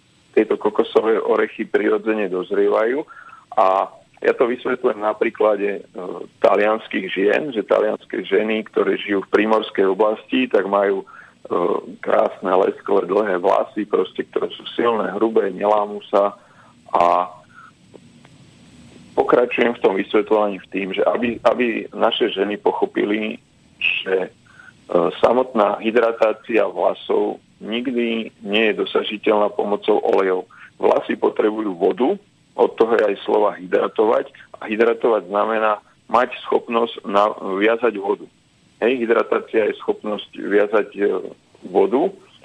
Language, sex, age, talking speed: Slovak, male, 40-59, 115 wpm